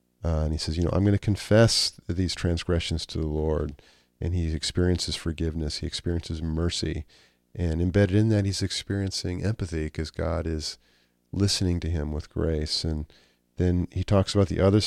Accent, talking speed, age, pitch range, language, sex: American, 180 wpm, 40-59, 80-95 Hz, English, male